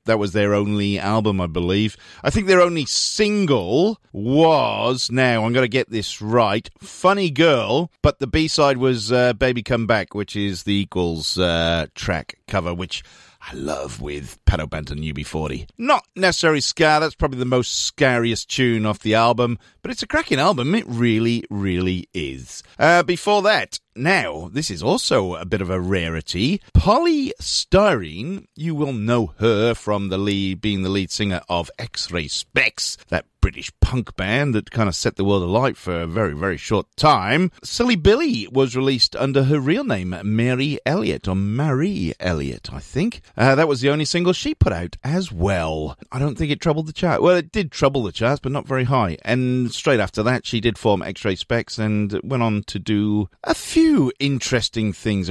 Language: English